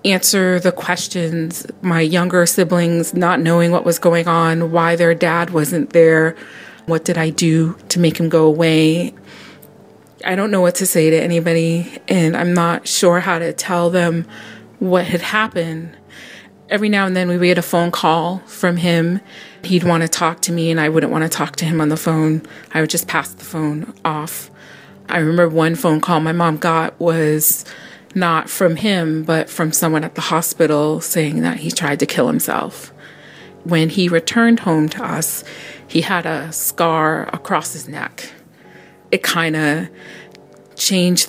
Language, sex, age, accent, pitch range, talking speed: English, female, 30-49, American, 160-175 Hz, 175 wpm